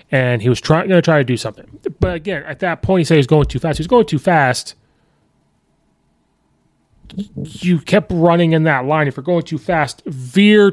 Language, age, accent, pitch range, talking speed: English, 30-49, American, 145-185 Hz, 200 wpm